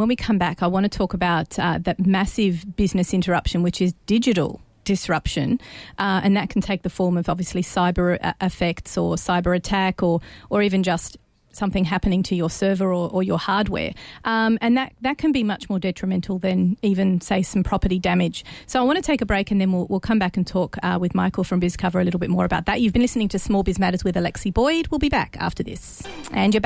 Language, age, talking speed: English, 30-49, 230 wpm